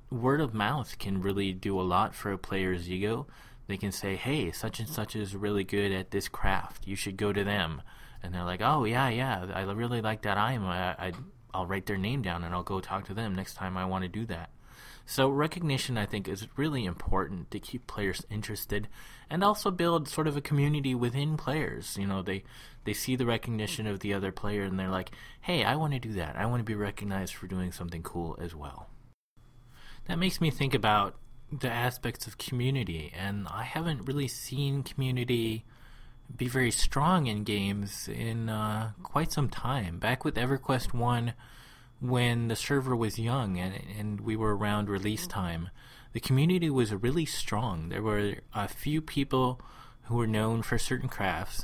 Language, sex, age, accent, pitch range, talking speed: English, male, 20-39, American, 95-130 Hz, 195 wpm